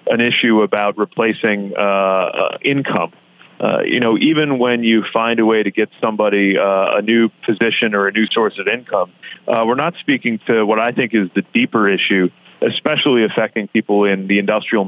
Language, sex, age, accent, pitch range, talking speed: English, male, 40-59, American, 100-115 Hz, 190 wpm